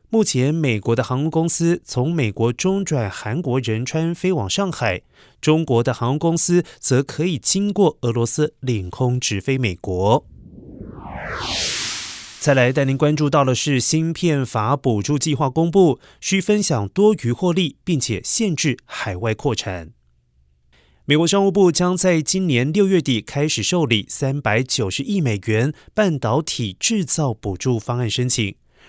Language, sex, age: Chinese, male, 30-49